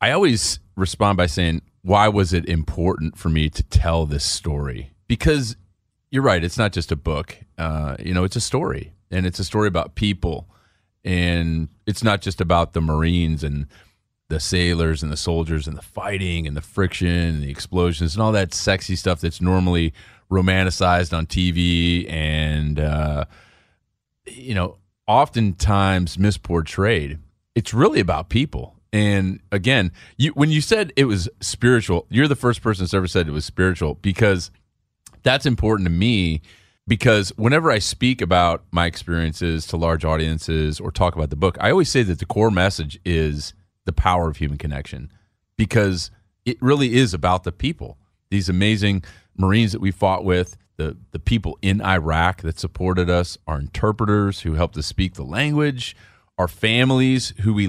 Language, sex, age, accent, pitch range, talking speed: English, male, 30-49, American, 85-105 Hz, 170 wpm